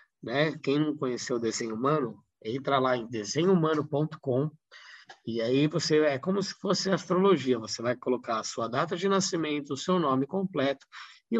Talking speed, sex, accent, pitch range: 170 wpm, male, Brazilian, 135-190 Hz